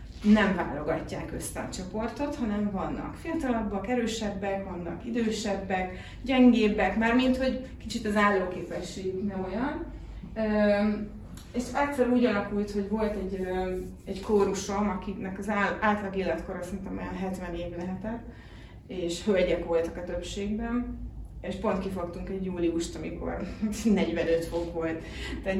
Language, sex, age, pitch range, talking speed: Hungarian, female, 30-49, 180-230 Hz, 120 wpm